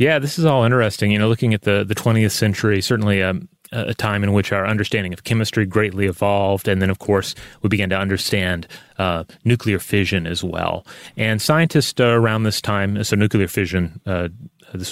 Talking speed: 195 wpm